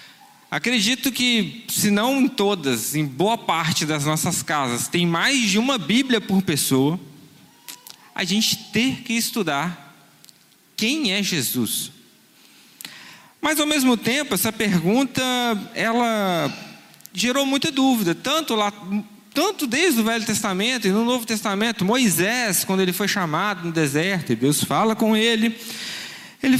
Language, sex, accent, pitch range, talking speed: Portuguese, male, Brazilian, 180-240 Hz, 140 wpm